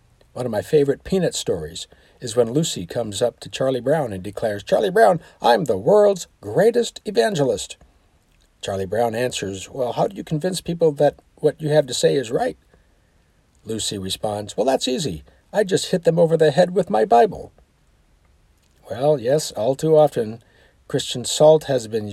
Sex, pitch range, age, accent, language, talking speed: male, 95-130 Hz, 60-79, American, English, 175 wpm